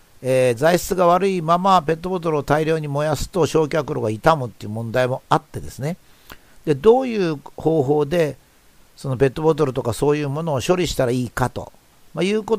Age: 50-69